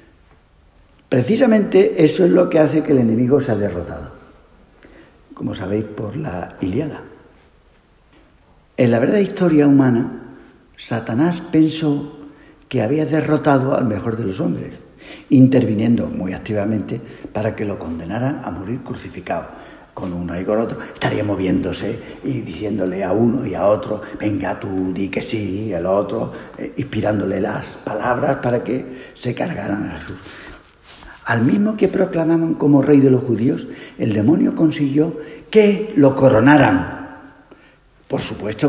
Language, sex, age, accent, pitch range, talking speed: Spanish, male, 60-79, Spanish, 110-165 Hz, 140 wpm